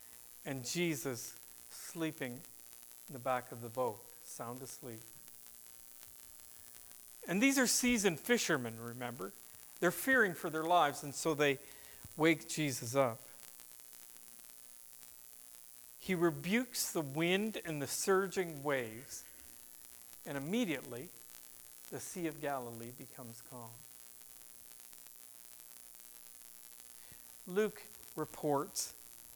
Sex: male